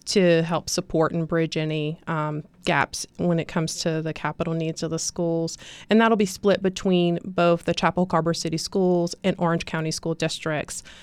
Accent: American